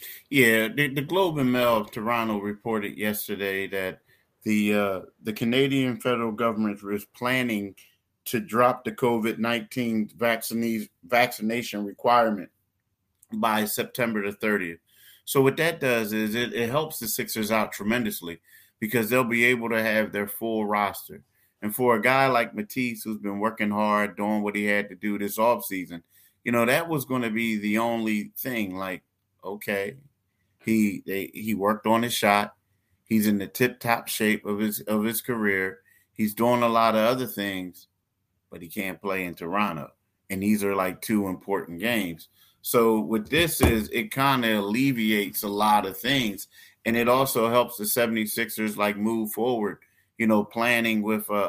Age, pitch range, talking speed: 30-49, 105-120 Hz, 165 wpm